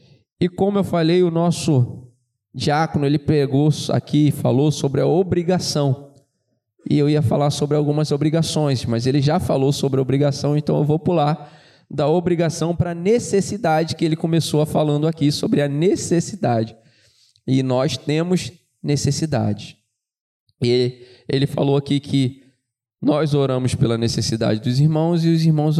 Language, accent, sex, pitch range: Portuguese, Brazilian, male, 125-160 Hz